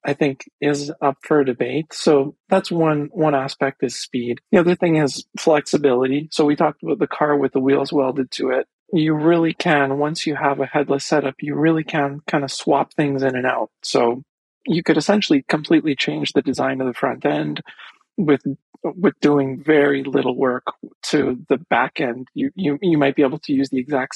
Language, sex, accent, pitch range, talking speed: English, male, American, 135-165 Hz, 200 wpm